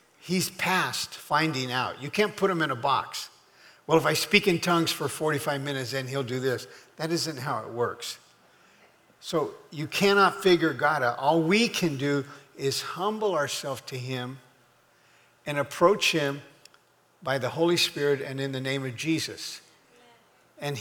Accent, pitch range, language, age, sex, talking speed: American, 140-195 Hz, English, 50-69, male, 165 wpm